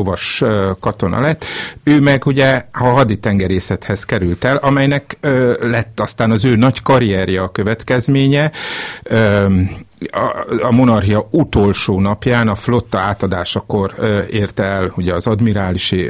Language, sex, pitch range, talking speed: Hungarian, male, 95-125 Hz, 130 wpm